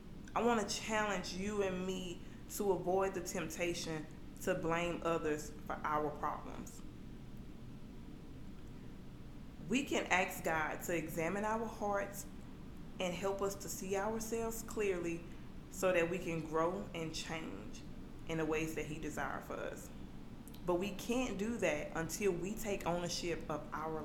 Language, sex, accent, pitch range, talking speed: English, female, American, 165-205 Hz, 145 wpm